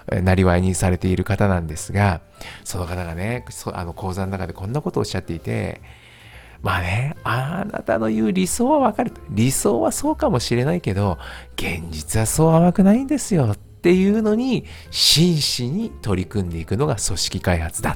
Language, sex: Japanese, male